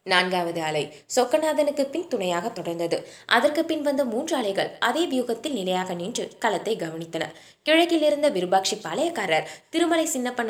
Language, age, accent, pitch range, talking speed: Tamil, 20-39, native, 175-265 Hz, 130 wpm